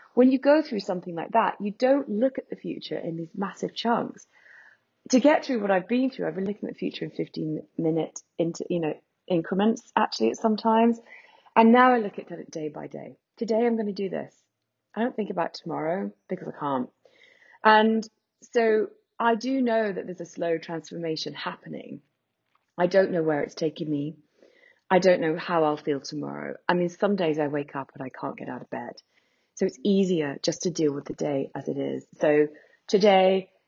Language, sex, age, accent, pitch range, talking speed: English, female, 30-49, British, 155-225 Hz, 210 wpm